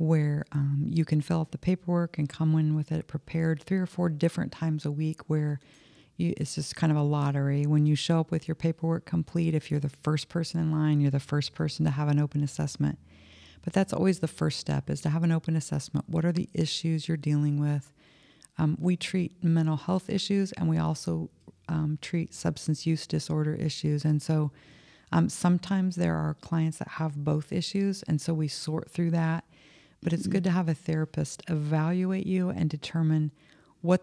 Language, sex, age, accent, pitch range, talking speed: English, female, 40-59, American, 150-165 Hz, 205 wpm